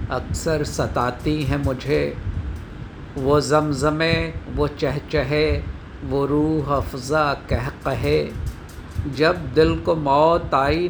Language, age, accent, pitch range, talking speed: Hindi, 50-69, native, 100-145 Hz, 100 wpm